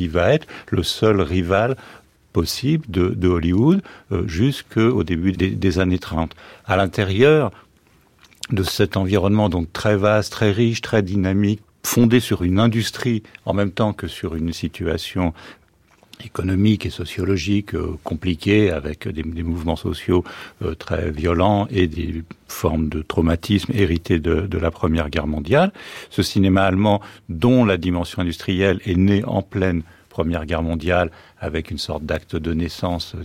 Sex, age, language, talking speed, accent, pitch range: male, 50-69, French, 150 wpm, French, 85-100 Hz